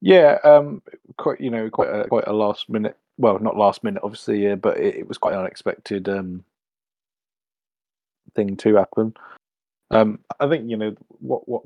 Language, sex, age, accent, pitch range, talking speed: English, male, 20-39, British, 100-115 Hz, 175 wpm